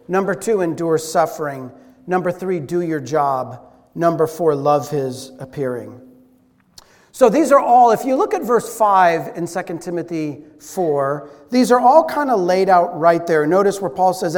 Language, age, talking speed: English, 40-59, 170 wpm